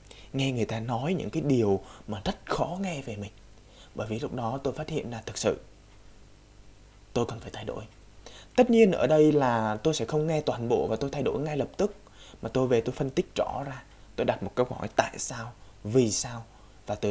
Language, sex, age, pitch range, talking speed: Vietnamese, male, 20-39, 105-150 Hz, 230 wpm